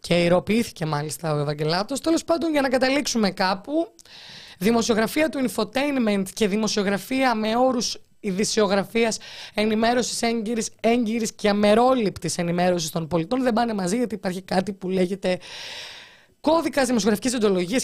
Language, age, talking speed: Greek, 20-39, 130 wpm